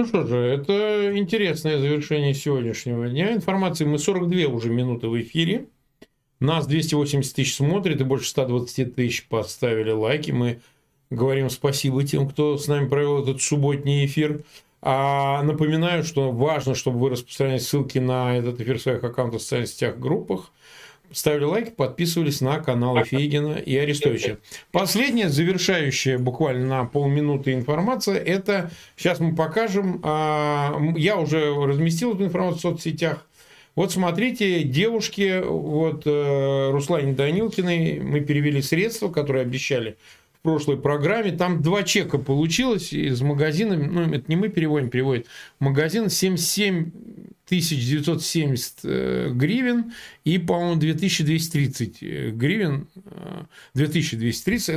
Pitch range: 135-175 Hz